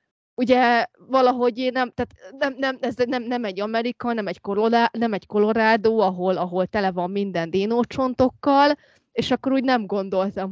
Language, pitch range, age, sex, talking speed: Hungarian, 190-235 Hz, 20-39, female, 150 wpm